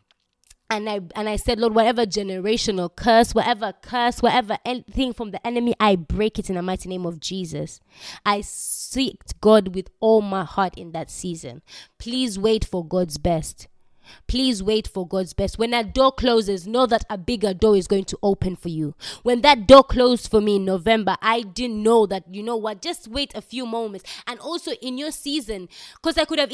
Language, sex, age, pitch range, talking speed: English, female, 20-39, 195-250 Hz, 200 wpm